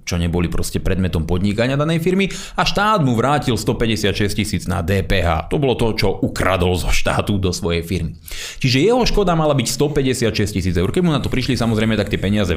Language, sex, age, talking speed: Slovak, male, 30-49, 200 wpm